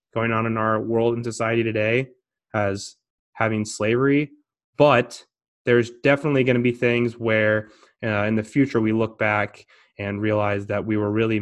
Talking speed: 170 wpm